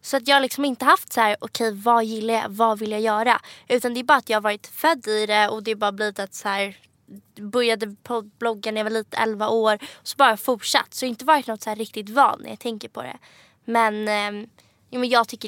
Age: 20-39